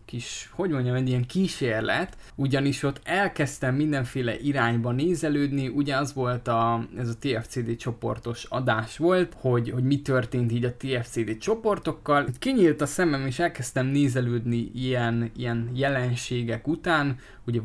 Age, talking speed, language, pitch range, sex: 20-39, 140 wpm, Hungarian, 120-145 Hz, male